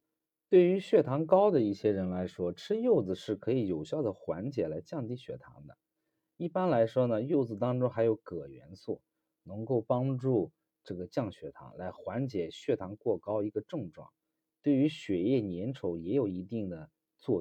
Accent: native